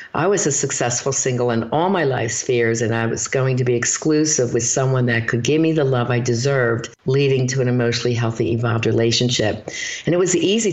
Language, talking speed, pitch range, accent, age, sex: English, 215 wpm, 120-150 Hz, American, 50-69, female